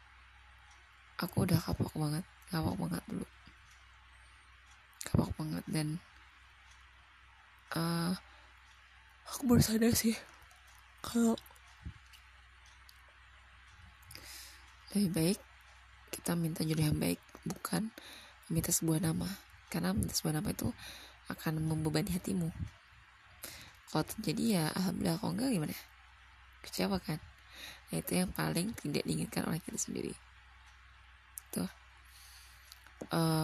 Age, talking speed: 20-39, 95 wpm